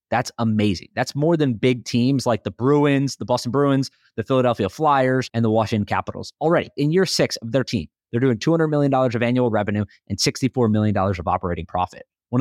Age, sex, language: 30-49, male, English